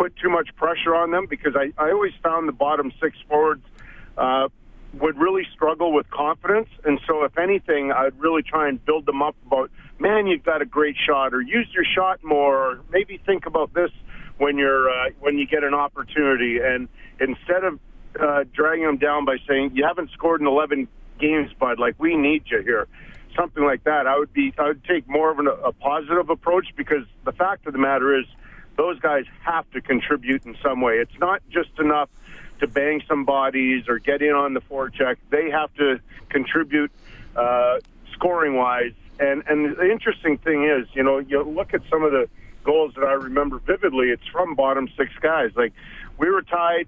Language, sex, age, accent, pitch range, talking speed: English, male, 50-69, American, 135-165 Hz, 200 wpm